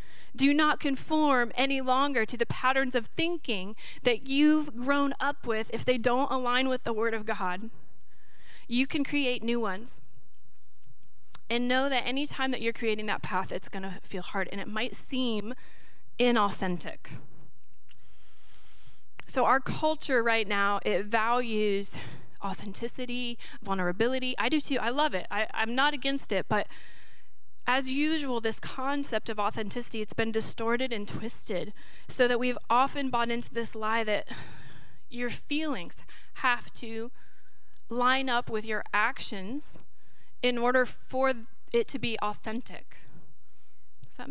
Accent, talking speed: American, 145 wpm